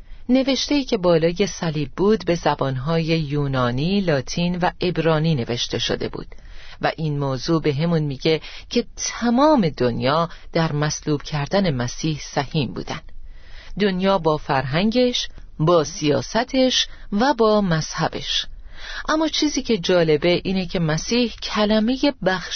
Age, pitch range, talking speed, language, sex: 40-59, 150-220 Hz, 120 wpm, Persian, female